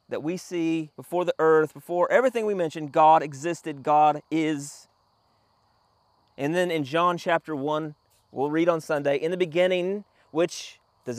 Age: 30-49